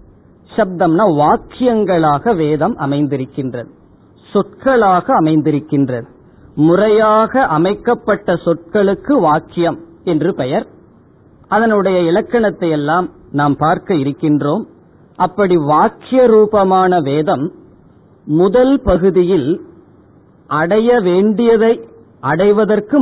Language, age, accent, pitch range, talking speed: Tamil, 40-59, native, 150-205 Hz, 70 wpm